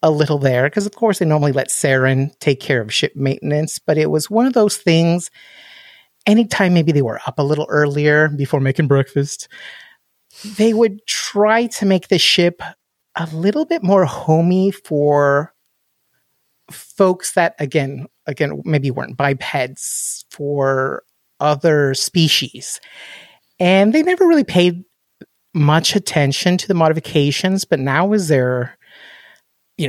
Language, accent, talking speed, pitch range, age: English, American, 145 wpm, 140-185 Hz, 30-49